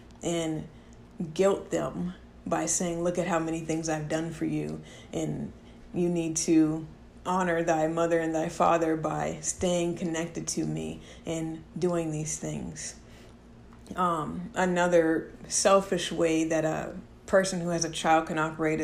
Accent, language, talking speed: American, English, 145 wpm